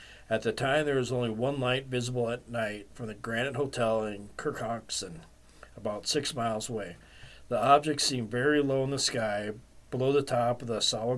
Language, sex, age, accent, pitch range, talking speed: English, male, 40-59, American, 110-135 Hz, 190 wpm